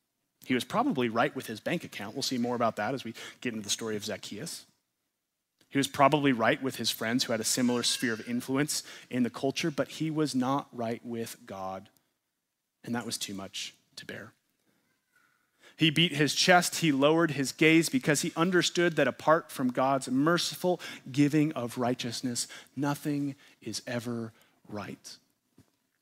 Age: 30-49